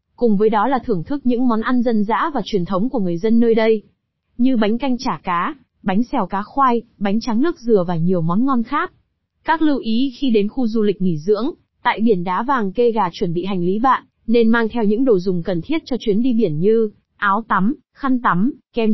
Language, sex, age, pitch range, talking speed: Vietnamese, female, 20-39, 195-250 Hz, 240 wpm